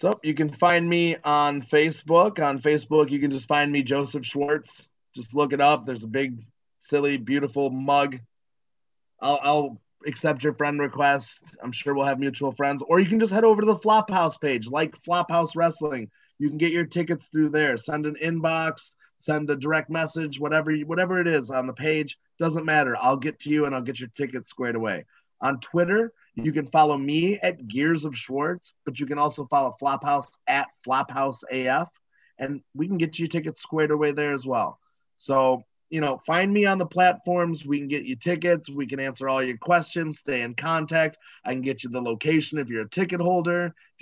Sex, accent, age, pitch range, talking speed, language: male, American, 30-49, 135-160 Hz, 205 wpm, English